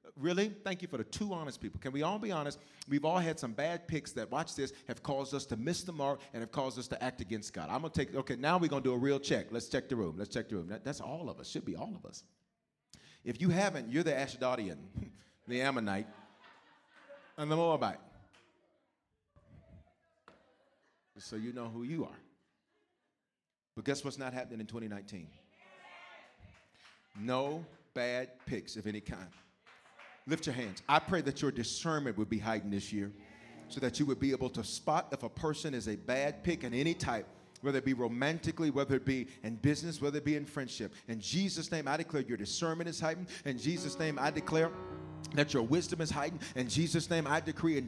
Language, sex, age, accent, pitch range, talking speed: English, male, 40-59, American, 125-170 Hz, 205 wpm